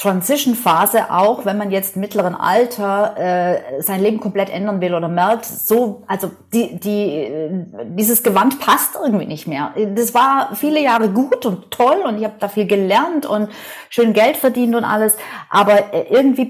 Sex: female